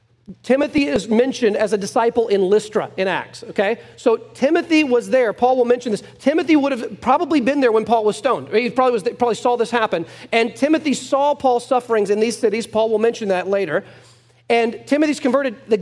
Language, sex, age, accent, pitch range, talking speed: English, male, 40-59, American, 215-260 Hz, 200 wpm